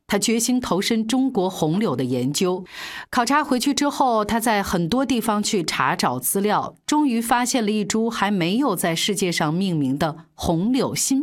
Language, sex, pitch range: Chinese, female, 180-260 Hz